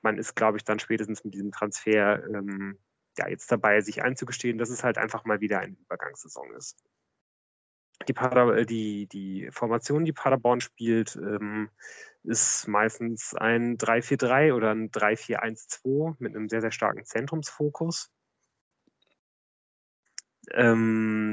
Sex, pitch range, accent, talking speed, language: male, 110-125 Hz, German, 130 wpm, German